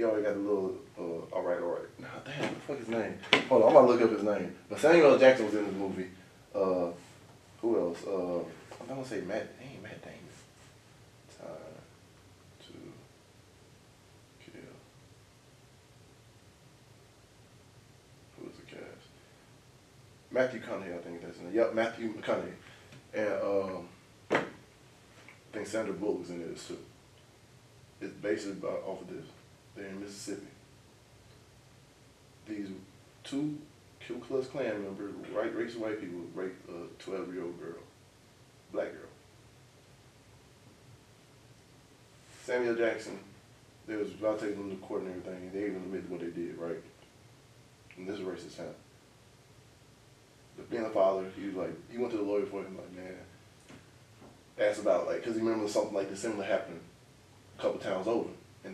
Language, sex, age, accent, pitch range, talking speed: English, male, 20-39, American, 100-130 Hz, 160 wpm